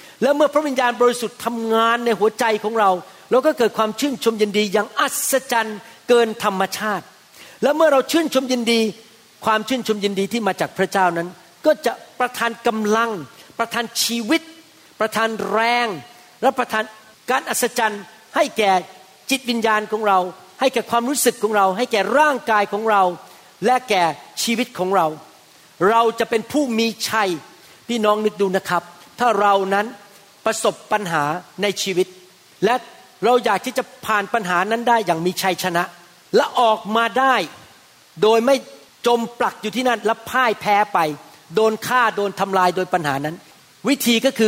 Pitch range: 190-240 Hz